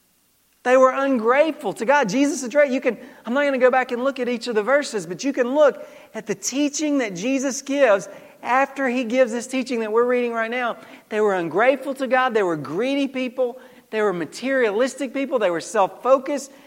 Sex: male